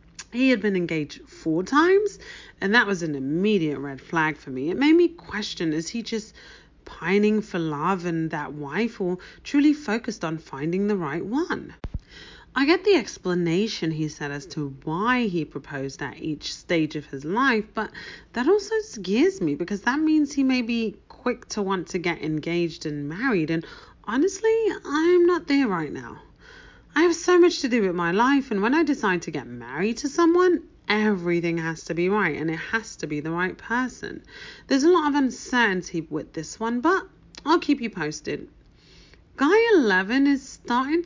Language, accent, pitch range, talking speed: English, British, 170-280 Hz, 185 wpm